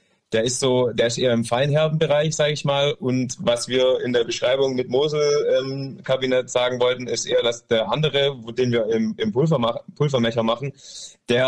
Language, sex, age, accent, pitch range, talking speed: German, male, 20-39, German, 115-130 Hz, 195 wpm